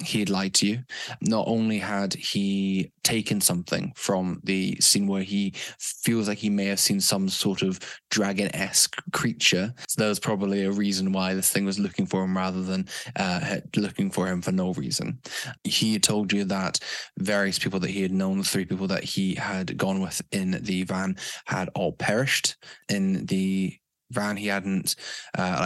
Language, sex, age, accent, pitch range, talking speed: English, male, 10-29, British, 95-105 Hz, 185 wpm